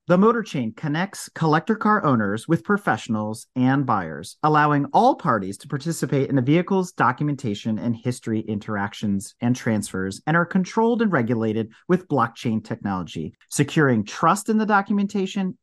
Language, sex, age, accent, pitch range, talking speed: English, male, 40-59, American, 125-185 Hz, 140 wpm